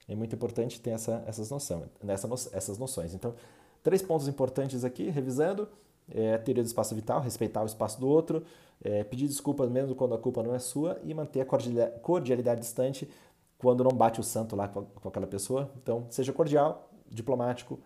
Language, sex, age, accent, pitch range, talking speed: Portuguese, male, 40-59, Brazilian, 100-130 Hz, 180 wpm